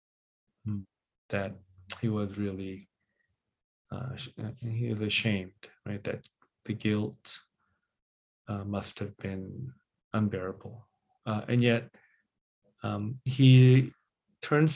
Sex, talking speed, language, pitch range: male, 95 wpm, English, 105-120 Hz